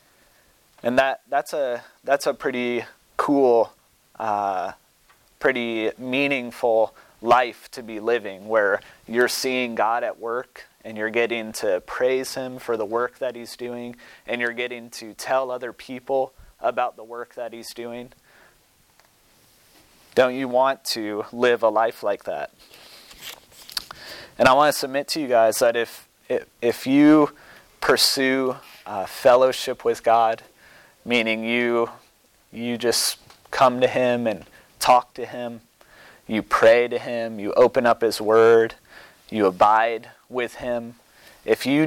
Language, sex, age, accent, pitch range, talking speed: English, male, 30-49, American, 115-130 Hz, 140 wpm